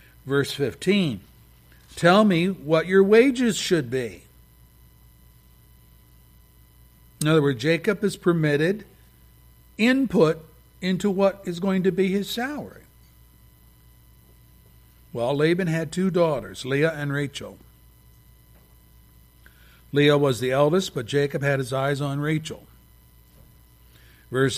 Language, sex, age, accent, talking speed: English, male, 60-79, American, 105 wpm